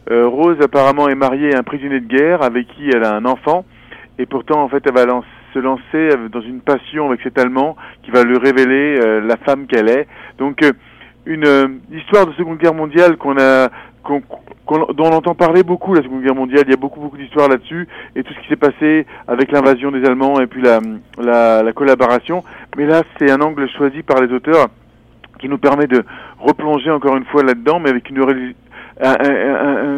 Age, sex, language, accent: 40-59, male, French, French